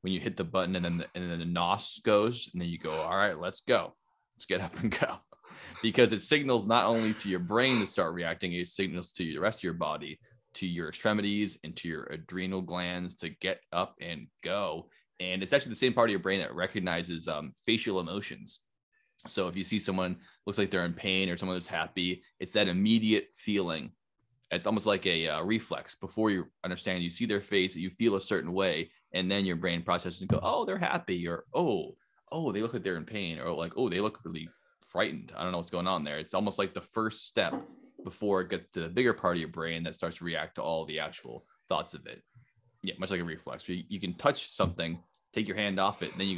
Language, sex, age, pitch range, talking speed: English, male, 20-39, 90-105 Hz, 240 wpm